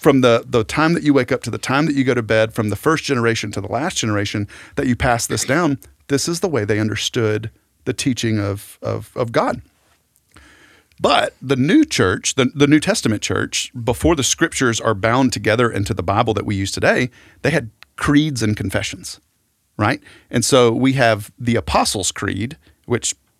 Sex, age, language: male, 40-59, English